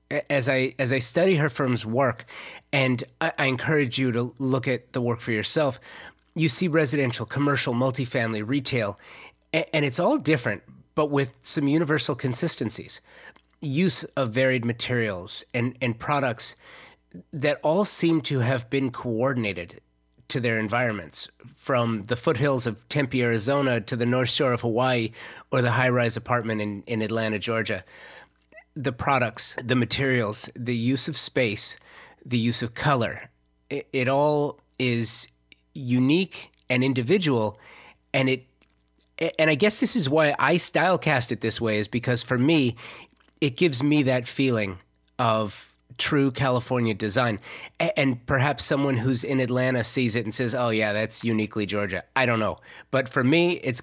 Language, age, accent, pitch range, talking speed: English, 30-49, American, 115-140 Hz, 155 wpm